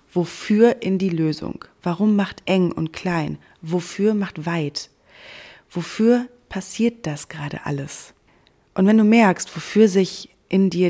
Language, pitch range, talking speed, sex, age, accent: German, 170-210 Hz, 140 wpm, female, 30-49, German